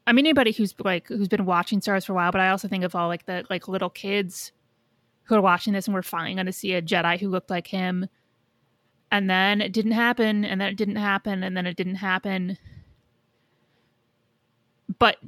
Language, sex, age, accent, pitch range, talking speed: English, female, 30-49, American, 170-205 Hz, 210 wpm